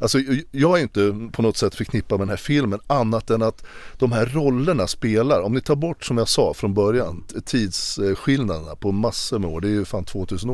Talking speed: 215 wpm